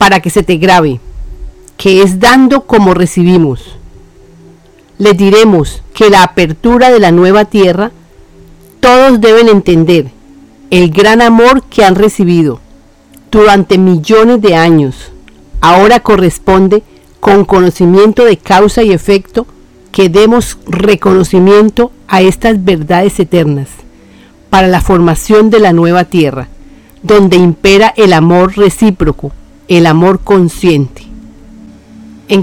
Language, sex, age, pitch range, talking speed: Spanish, female, 40-59, 160-215 Hz, 115 wpm